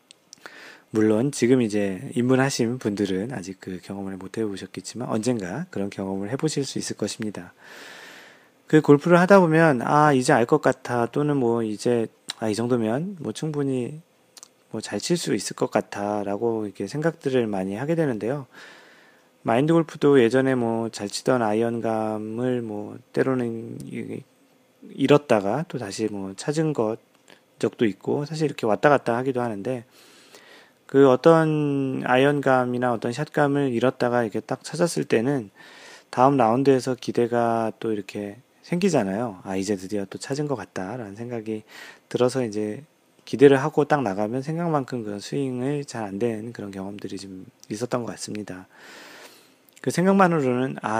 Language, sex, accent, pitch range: Korean, male, native, 105-140 Hz